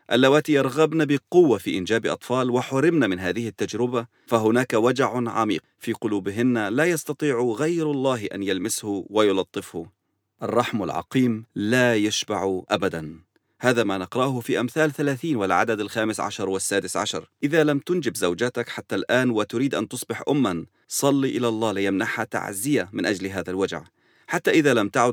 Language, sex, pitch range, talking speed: English, male, 105-135 Hz, 145 wpm